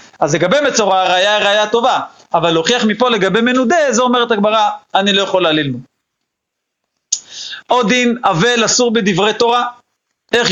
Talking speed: 145 wpm